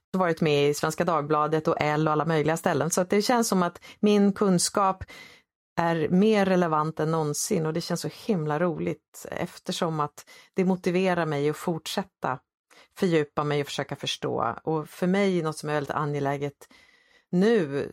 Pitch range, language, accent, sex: 145-180 Hz, English, Swedish, female